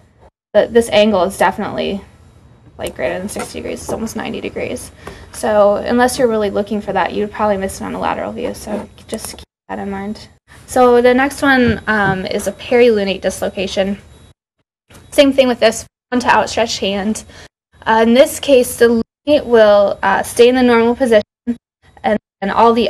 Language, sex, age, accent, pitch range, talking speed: English, female, 10-29, American, 200-240 Hz, 180 wpm